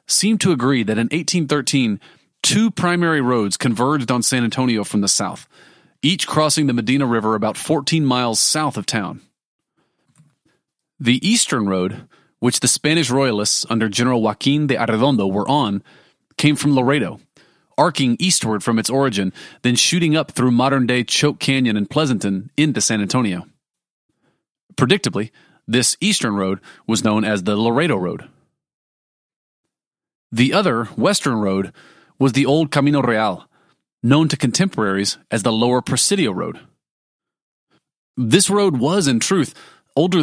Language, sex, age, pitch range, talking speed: English, male, 30-49, 115-150 Hz, 140 wpm